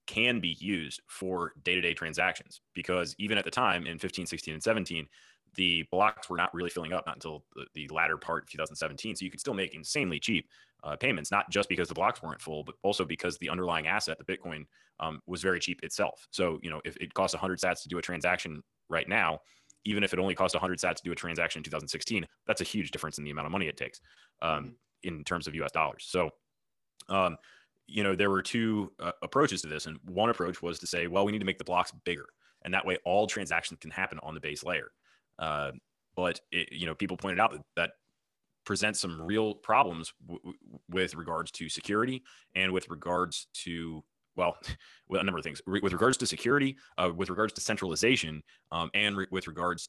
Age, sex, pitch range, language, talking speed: 30-49, male, 80-95 Hz, English, 220 wpm